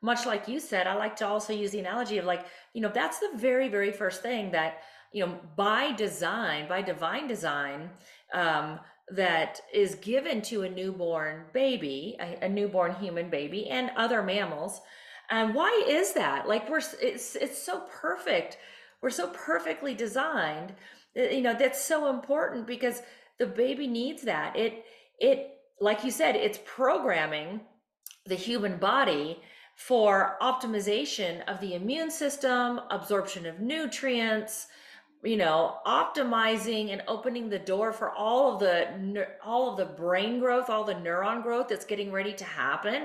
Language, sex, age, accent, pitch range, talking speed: English, female, 40-59, American, 185-245 Hz, 160 wpm